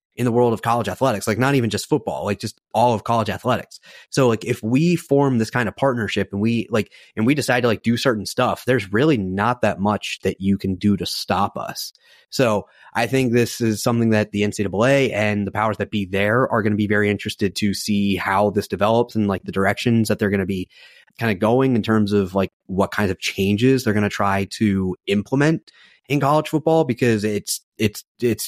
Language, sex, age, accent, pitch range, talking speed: English, male, 30-49, American, 100-120 Hz, 230 wpm